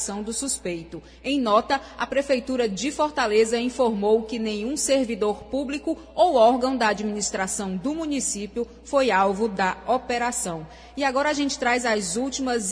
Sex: female